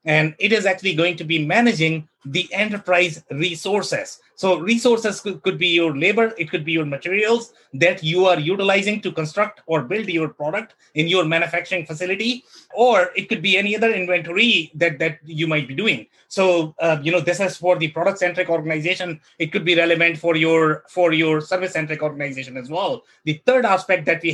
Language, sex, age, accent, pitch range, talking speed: English, male, 30-49, Indian, 160-205 Hz, 195 wpm